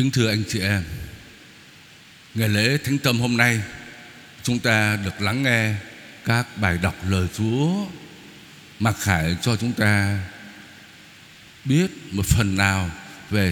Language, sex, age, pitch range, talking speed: Vietnamese, male, 60-79, 110-155 Hz, 135 wpm